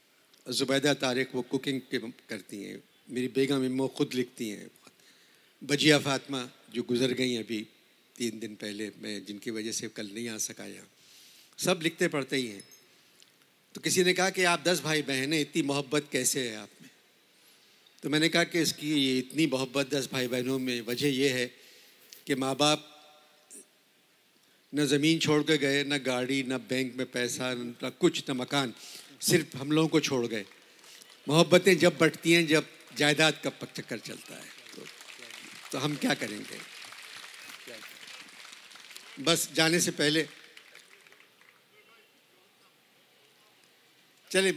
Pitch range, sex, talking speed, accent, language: 125-160 Hz, male, 145 wpm, native, Hindi